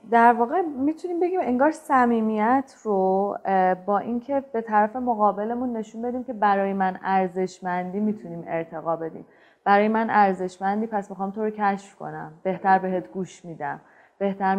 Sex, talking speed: female, 145 wpm